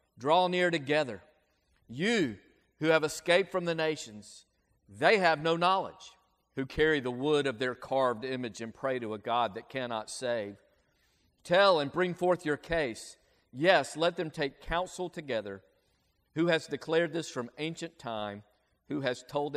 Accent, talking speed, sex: American, 160 wpm, male